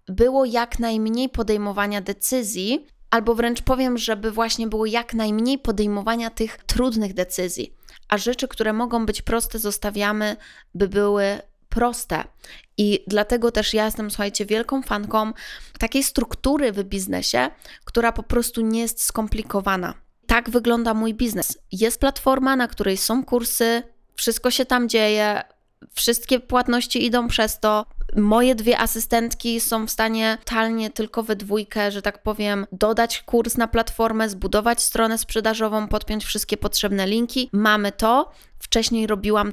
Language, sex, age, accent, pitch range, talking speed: Polish, female, 20-39, native, 200-235 Hz, 140 wpm